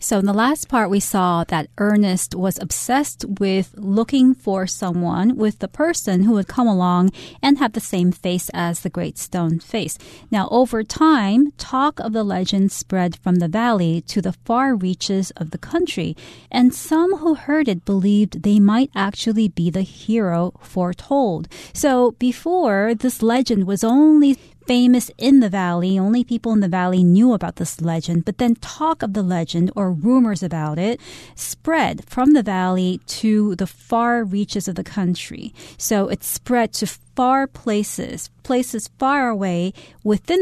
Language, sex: Chinese, female